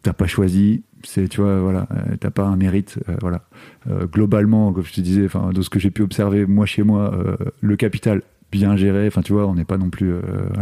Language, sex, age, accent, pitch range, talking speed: French, male, 30-49, French, 95-115 Hz, 230 wpm